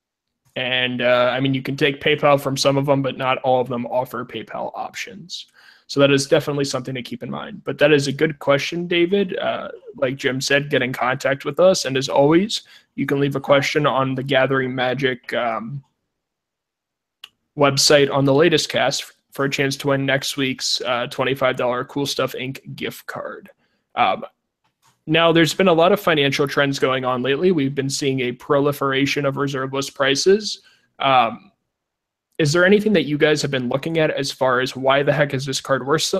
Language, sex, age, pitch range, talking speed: English, male, 20-39, 130-145 Hz, 195 wpm